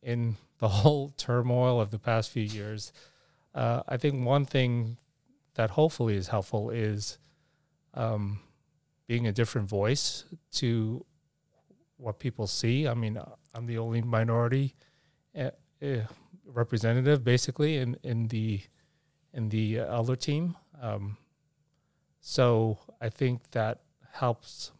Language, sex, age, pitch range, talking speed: English, male, 30-49, 110-145 Hz, 120 wpm